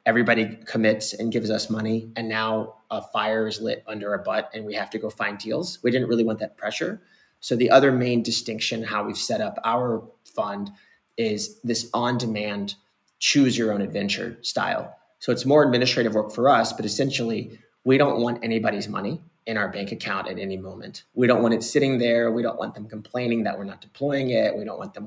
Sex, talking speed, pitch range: male, 215 wpm, 105-125 Hz